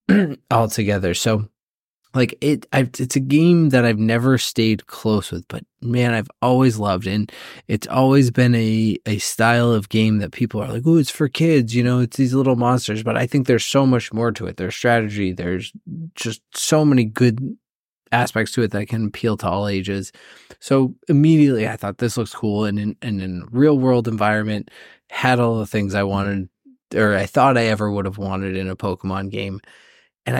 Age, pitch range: 20-39, 100-125 Hz